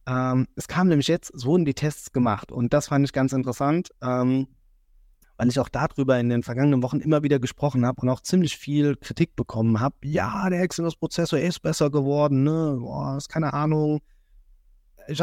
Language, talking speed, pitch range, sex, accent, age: German, 175 wpm, 115-150 Hz, male, German, 20-39